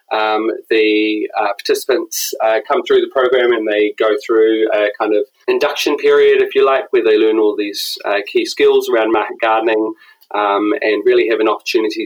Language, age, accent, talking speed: English, 20-39, Australian, 190 wpm